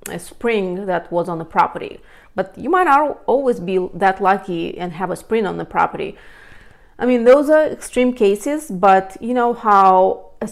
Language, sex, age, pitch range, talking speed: English, female, 30-49, 185-235 Hz, 190 wpm